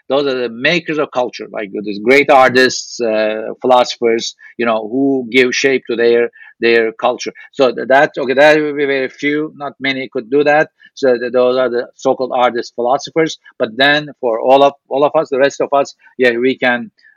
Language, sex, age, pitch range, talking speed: English, male, 50-69, 125-145 Hz, 200 wpm